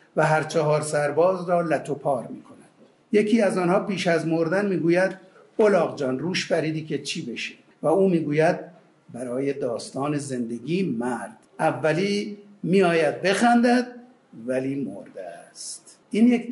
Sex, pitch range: male, 145-195 Hz